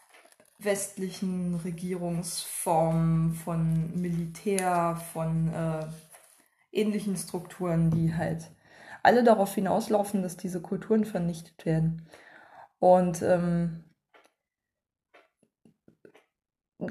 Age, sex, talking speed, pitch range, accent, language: 20-39, female, 75 wpm, 170-215 Hz, German, German